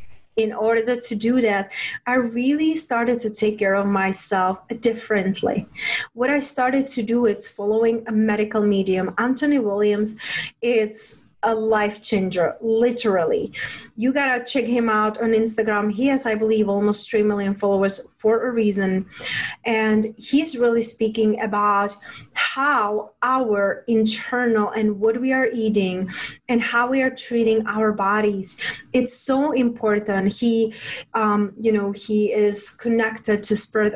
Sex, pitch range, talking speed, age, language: female, 210-240 Hz, 145 wpm, 30-49, English